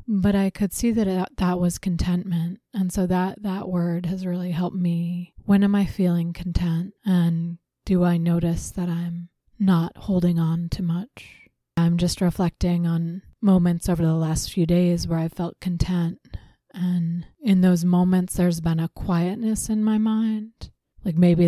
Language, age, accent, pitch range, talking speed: English, 20-39, American, 170-185 Hz, 170 wpm